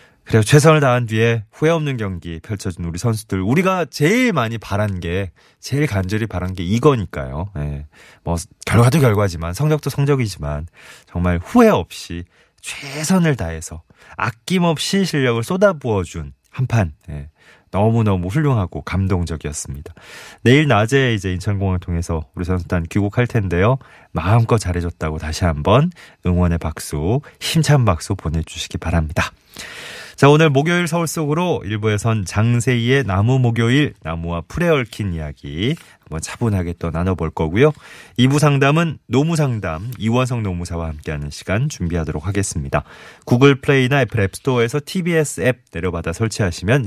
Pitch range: 85-135 Hz